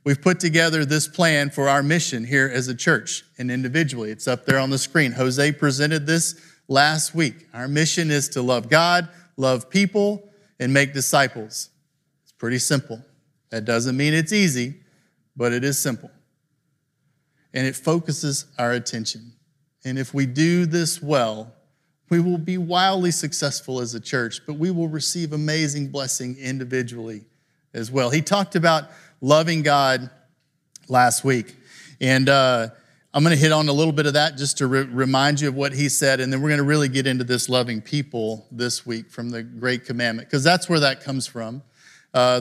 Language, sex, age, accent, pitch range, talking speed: English, male, 50-69, American, 130-150 Hz, 175 wpm